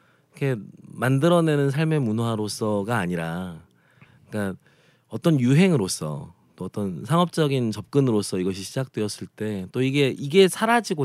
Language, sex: Korean, male